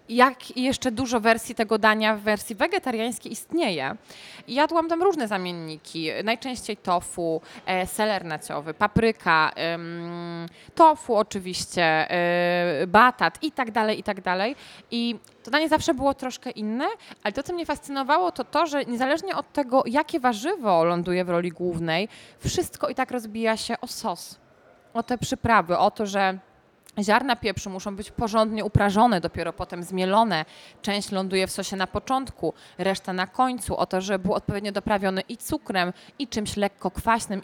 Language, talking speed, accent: Polish, 155 wpm, native